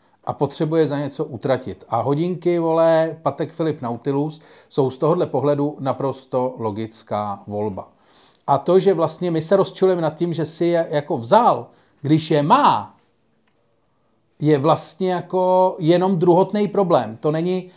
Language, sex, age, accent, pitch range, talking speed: Czech, male, 40-59, native, 145-185 Hz, 145 wpm